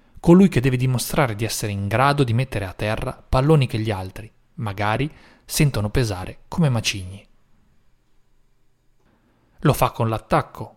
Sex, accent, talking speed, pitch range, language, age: male, native, 140 wpm, 110-180 Hz, Italian, 30-49